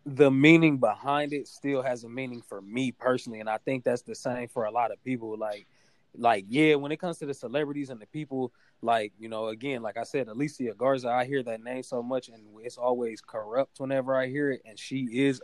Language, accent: English, American